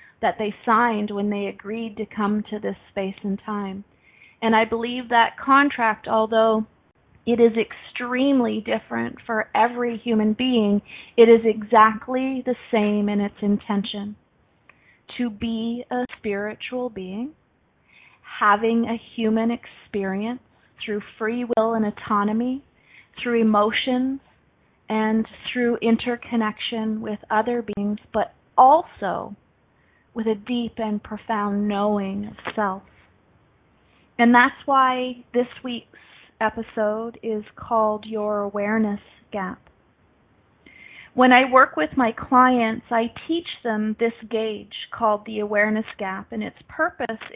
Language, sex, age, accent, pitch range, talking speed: English, female, 30-49, American, 210-240 Hz, 120 wpm